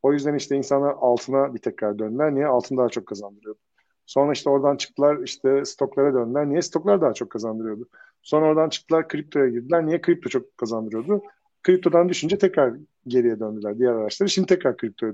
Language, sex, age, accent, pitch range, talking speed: Turkish, male, 50-69, native, 120-165 Hz, 175 wpm